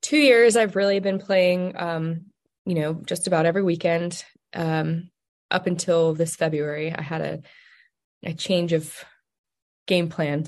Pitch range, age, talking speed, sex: 160-185 Hz, 20-39, 150 wpm, female